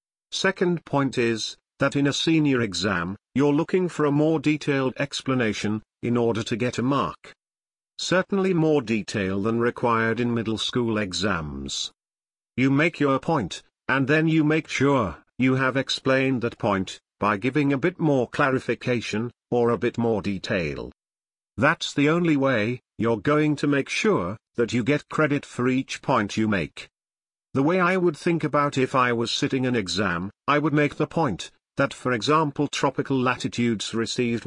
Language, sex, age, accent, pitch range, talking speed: English, male, 50-69, British, 115-145 Hz, 165 wpm